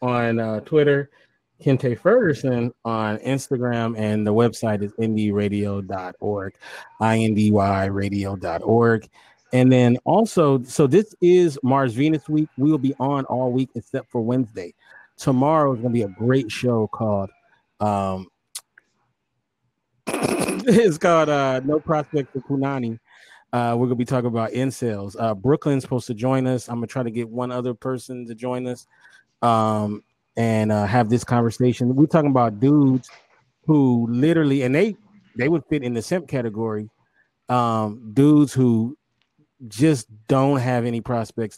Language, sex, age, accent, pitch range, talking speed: English, male, 30-49, American, 110-130 Hz, 150 wpm